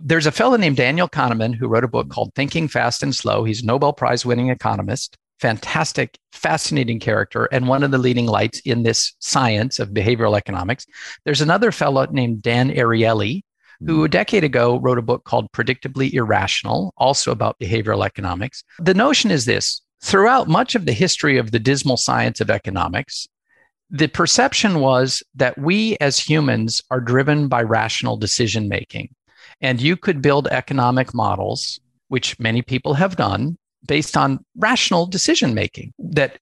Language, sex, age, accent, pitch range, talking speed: English, male, 50-69, American, 120-160 Hz, 165 wpm